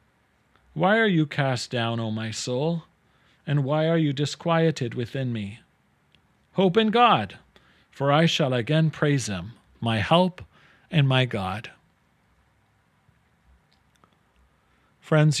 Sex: male